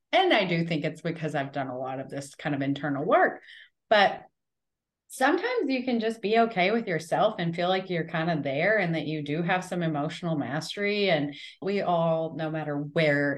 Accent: American